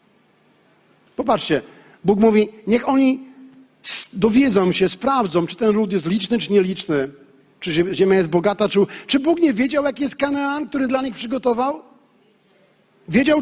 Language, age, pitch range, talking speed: Polish, 50-69, 195-250 Hz, 145 wpm